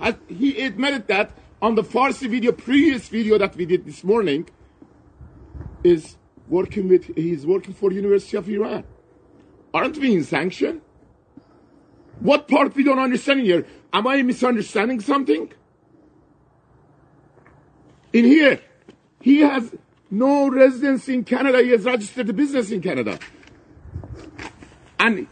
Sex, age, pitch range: male, 50-69, 205-280 Hz